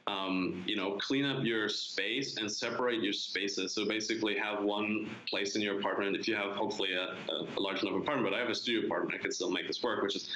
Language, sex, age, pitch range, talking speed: English, male, 20-39, 100-115 Hz, 250 wpm